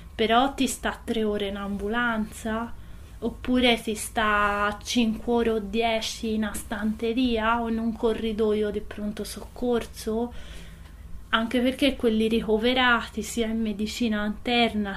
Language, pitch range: Italian, 210-235 Hz